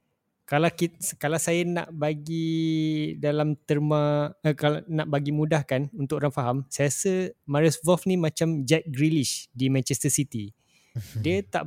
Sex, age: male, 20-39